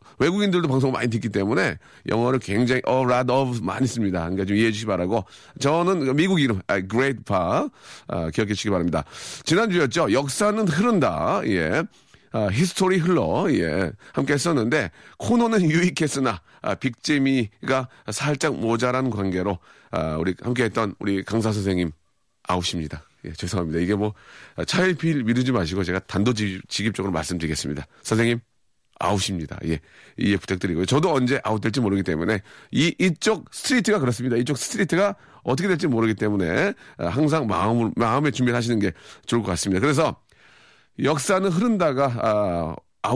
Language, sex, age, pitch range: Korean, male, 40-59, 95-150 Hz